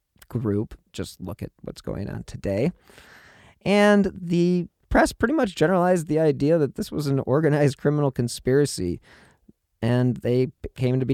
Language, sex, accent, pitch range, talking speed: English, male, American, 105-155 Hz, 150 wpm